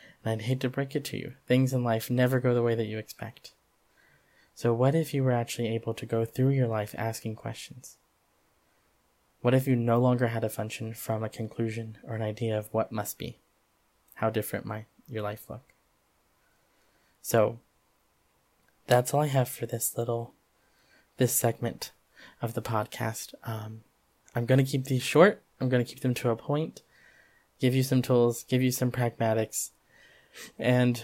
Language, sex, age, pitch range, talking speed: English, male, 20-39, 110-130 Hz, 180 wpm